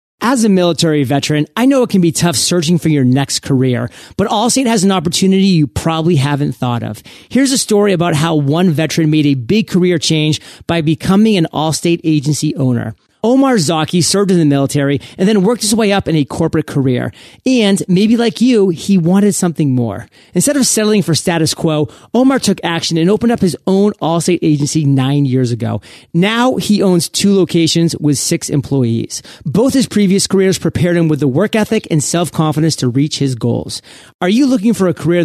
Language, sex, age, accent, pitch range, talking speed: English, male, 40-59, American, 145-195 Hz, 195 wpm